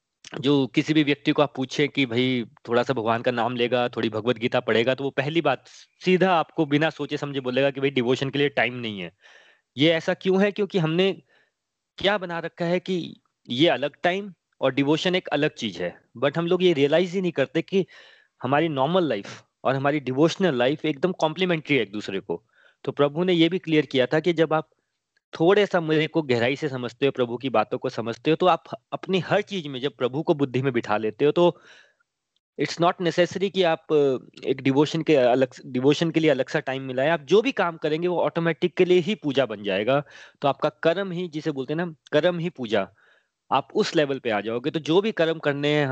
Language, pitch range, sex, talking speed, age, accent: Hindi, 130-170 Hz, male, 195 wpm, 30-49, native